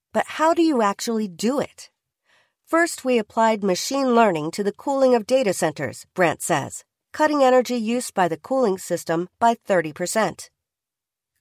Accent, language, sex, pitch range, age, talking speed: American, English, female, 190-255 Hz, 40-59, 155 wpm